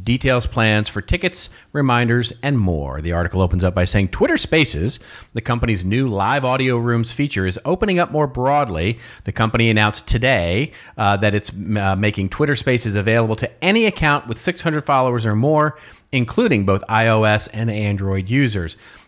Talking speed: 165 wpm